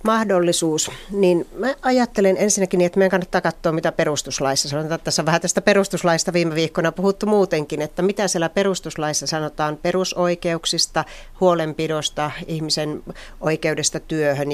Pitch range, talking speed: 150-180 Hz, 120 wpm